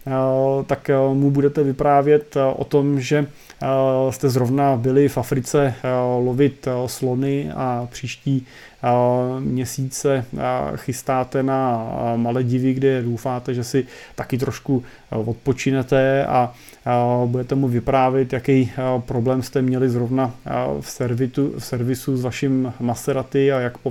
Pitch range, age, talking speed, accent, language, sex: 125-140 Hz, 30-49, 115 wpm, native, Czech, male